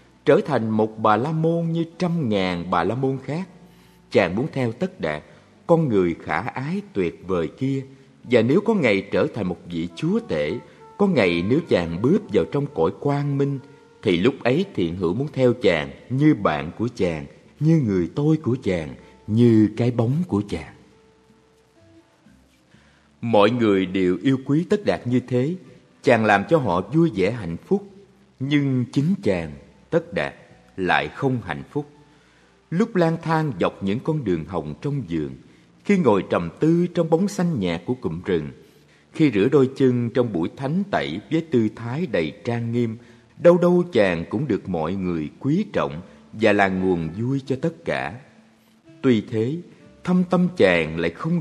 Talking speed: 175 wpm